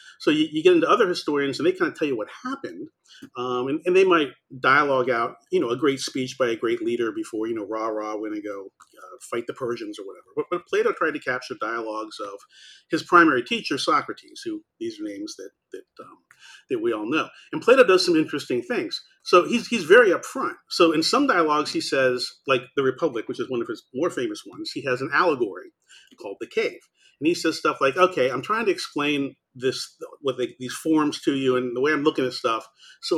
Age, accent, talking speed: 40-59, American, 230 wpm